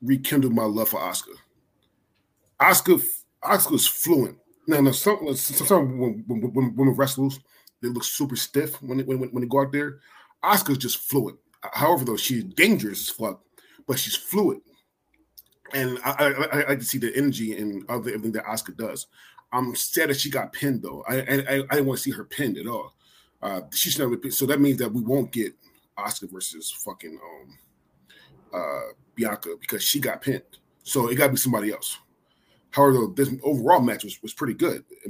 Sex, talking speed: male, 190 wpm